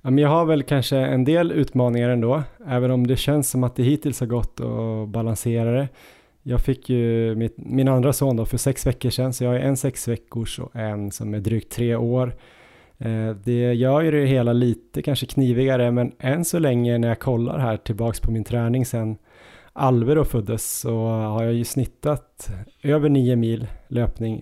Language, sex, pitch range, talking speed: Swedish, male, 115-130 Hz, 185 wpm